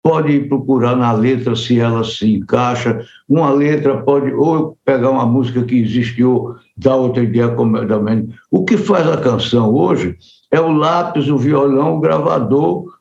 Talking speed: 155 wpm